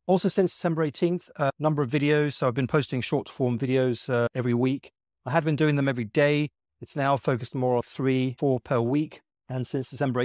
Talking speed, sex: 215 wpm, male